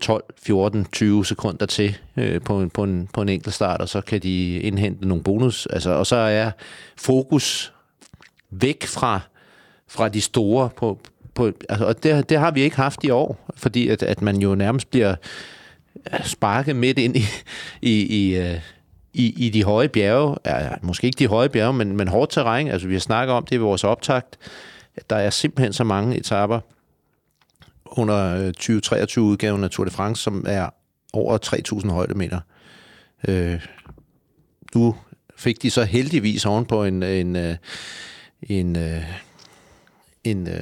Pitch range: 95-115 Hz